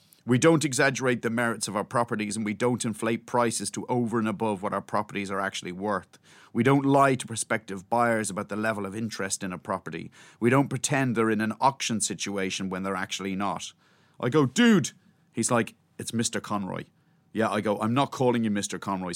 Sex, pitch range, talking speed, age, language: male, 105-135 Hz, 205 wpm, 30-49, English